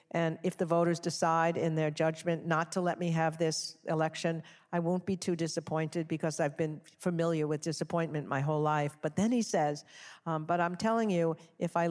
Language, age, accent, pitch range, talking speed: English, 50-69, American, 160-185 Hz, 200 wpm